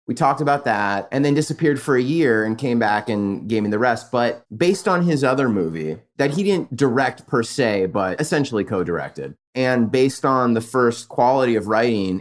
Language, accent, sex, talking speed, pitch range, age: English, American, male, 200 wpm, 100-135 Hz, 30-49